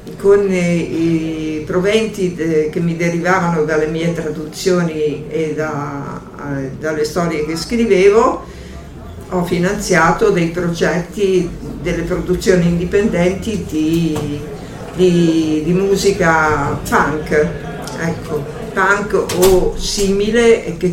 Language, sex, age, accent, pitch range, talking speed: Italian, female, 50-69, native, 160-195 Hz, 90 wpm